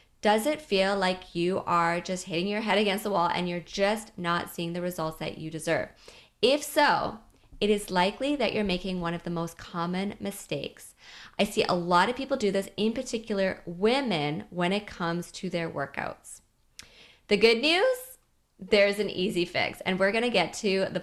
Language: English